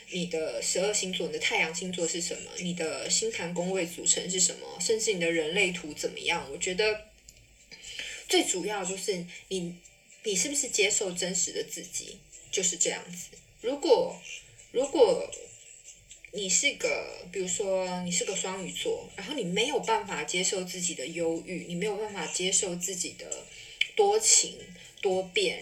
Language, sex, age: Chinese, female, 20-39